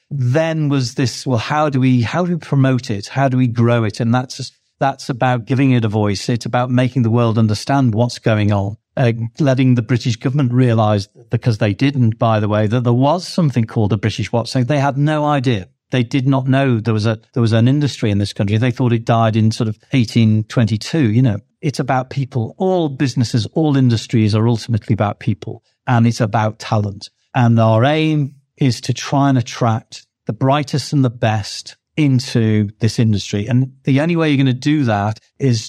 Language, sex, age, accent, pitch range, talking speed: English, male, 50-69, British, 110-135 Hz, 220 wpm